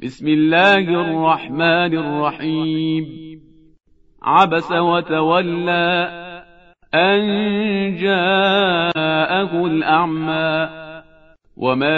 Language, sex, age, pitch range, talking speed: Persian, male, 40-59, 160-195 Hz, 50 wpm